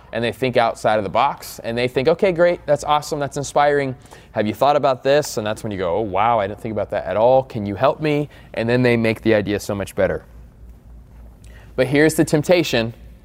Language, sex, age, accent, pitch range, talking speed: English, male, 20-39, American, 100-135 Hz, 235 wpm